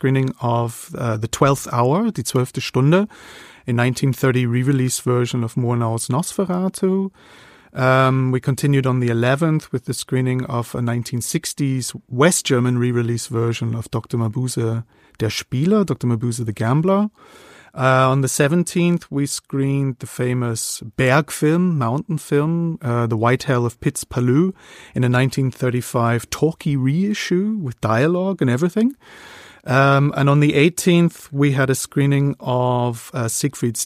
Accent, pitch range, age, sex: German, 125-155 Hz, 30-49, male